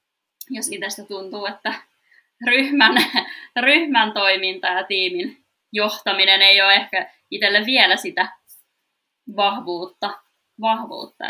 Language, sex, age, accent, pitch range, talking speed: Finnish, female, 20-39, native, 180-245 Hz, 95 wpm